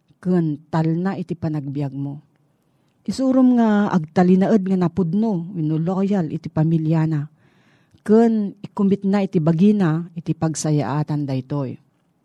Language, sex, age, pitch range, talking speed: Filipino, female, 40-59, 155-200 Hz, 115 wpm